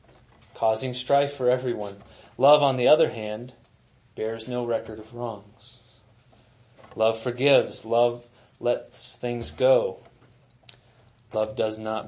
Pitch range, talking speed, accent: 115-125 Hz, 115 wpm, American